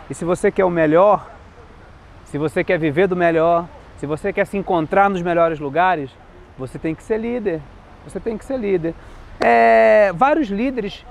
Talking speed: 175 wpm